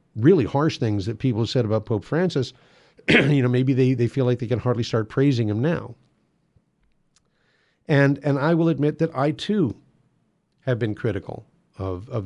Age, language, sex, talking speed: 50-69, English, male, 175 wpm